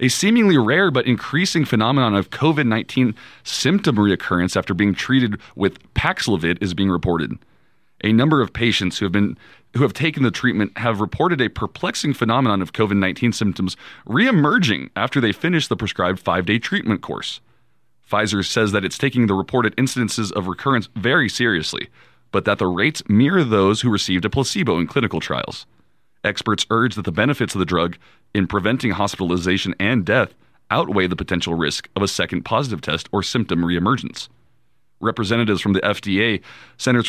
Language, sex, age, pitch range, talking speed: English, male, 30-49, 95-120 Hz, 165 wpm